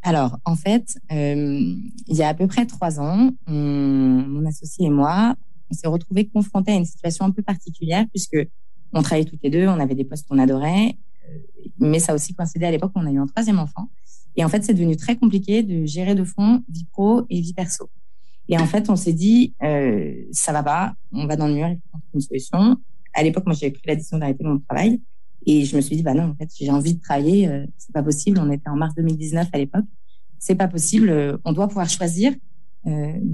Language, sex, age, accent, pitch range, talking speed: French, female, 20-39, French, 155-195 Hz, 235 wpm